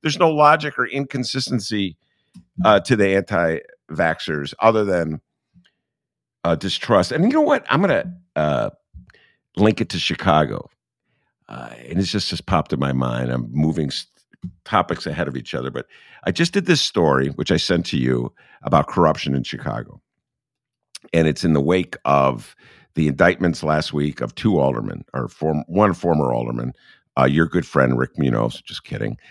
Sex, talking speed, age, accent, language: male, 165 wpm, 50-69, American, English